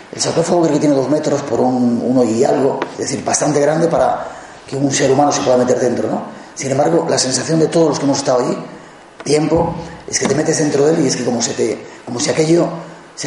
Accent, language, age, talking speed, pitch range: Spanish, Spanish, 30-49, 250 wpm, 130-160 Hz